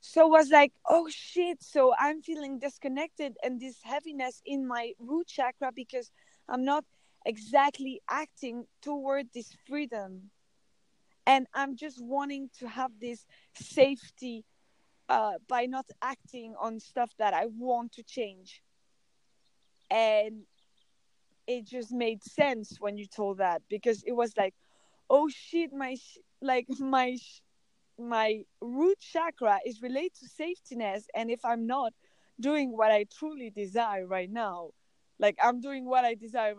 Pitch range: 230-285 Hz